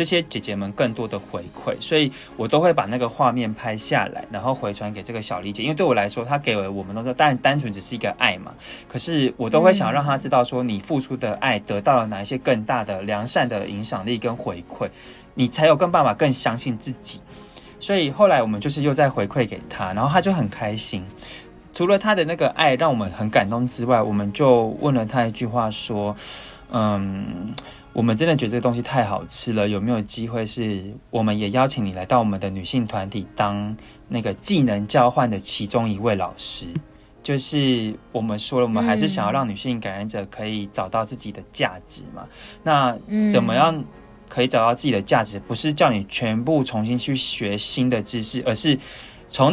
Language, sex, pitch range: Chinese, male, 105-130 Hz